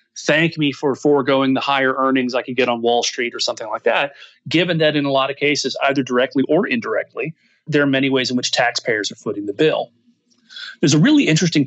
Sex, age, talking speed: male, 30-49, 220 wpm